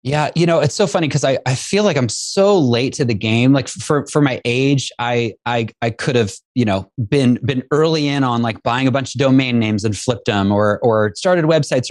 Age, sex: 30-49, male